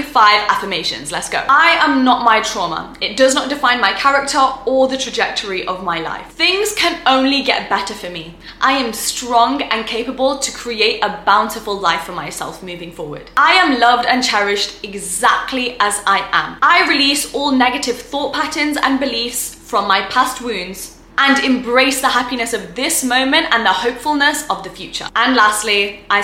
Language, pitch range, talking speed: English, 200-275 Hz, 180 wpm